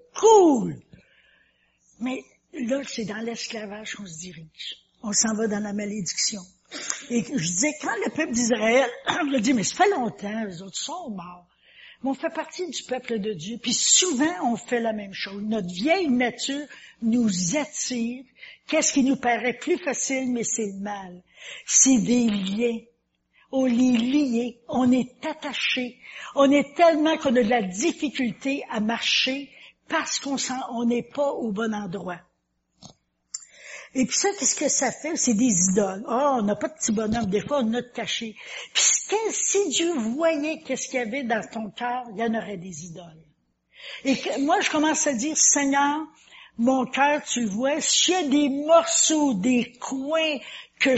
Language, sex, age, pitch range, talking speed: French, female, 60-79, 225-295 Hz, 180 wpm